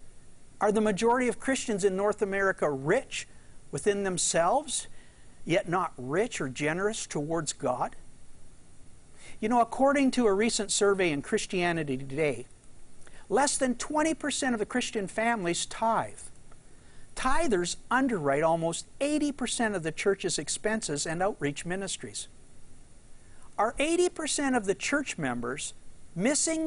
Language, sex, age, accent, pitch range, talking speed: English, male, 50-69, American, 175-245 Hz, 120 wpm